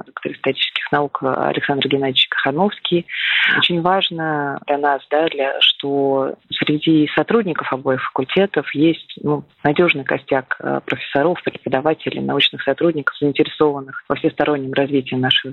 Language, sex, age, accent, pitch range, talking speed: Russian, female, 20-39, native, 140-170 Hz, 115 wpm